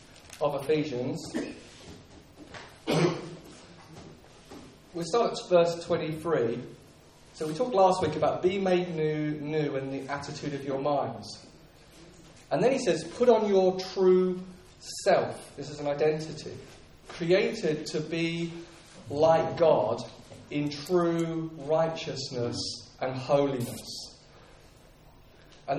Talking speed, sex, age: 105 wpm, male, 30-49